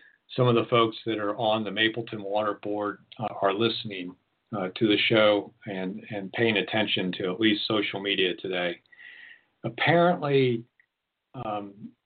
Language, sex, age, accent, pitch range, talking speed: English, male, 50-69, American, 105-125 Hz, 150 wpm